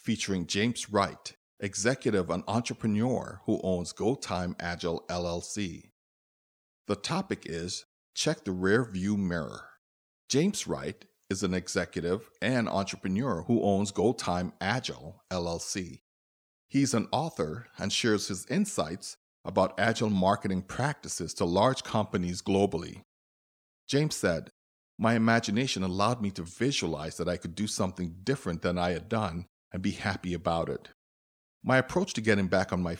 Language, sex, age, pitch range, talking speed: English, male, 50-69, 85-110 Hz, 140 wpm